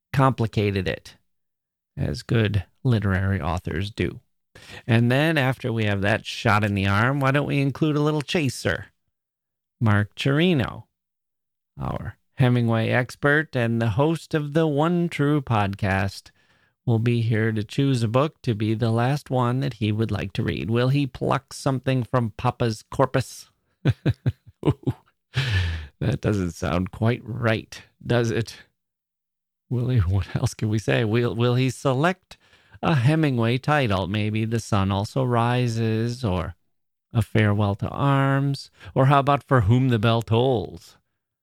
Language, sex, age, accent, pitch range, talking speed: English, male, 40-59, American, 105-130 Hz, 145 wpm